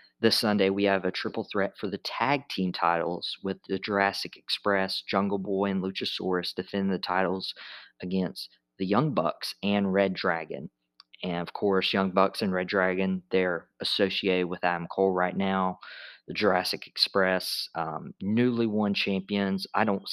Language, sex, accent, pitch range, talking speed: English, male, American, 90-100 Hz, 160 wpm